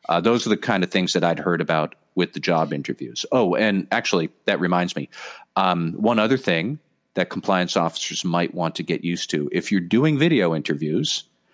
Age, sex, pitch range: 40-59, male, 90-115 Hz